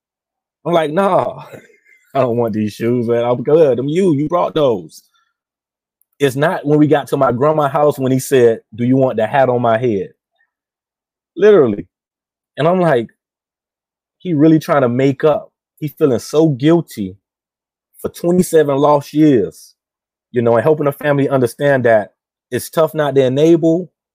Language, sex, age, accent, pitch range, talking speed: English, male, 30-49, American, 120-160 Hz, 165 wpm